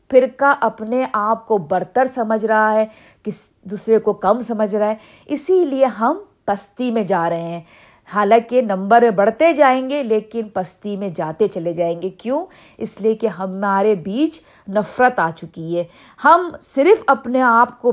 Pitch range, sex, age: 195-260 Hz, female, 50-69